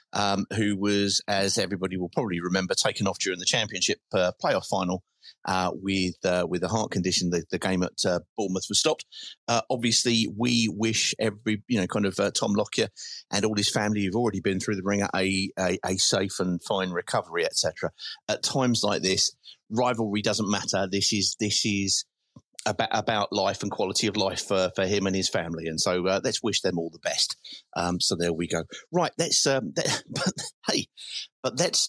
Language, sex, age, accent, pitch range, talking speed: English, male, 30-49, British, 95-120 Hz, 200 wpm